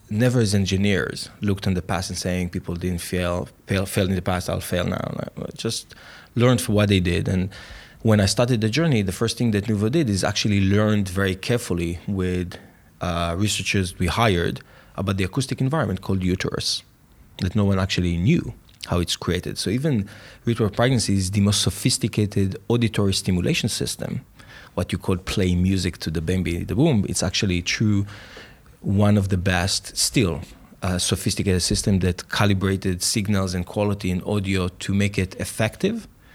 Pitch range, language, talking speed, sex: 90-110 Hz, English, 175 wpm, male